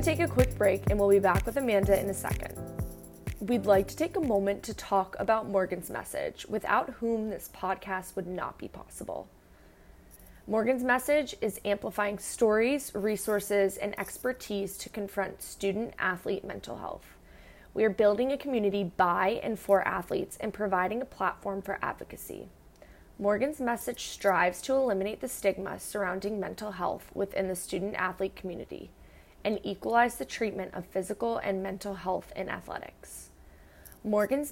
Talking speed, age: 155 wpm, 20-39